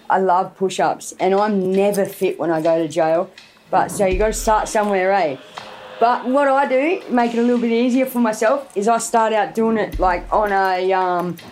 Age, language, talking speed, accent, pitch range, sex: 30-49, English, 220 wpm, Australian, 220-310 Hz, female